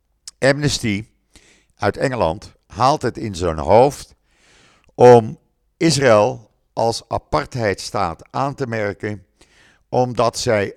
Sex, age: male, 50-69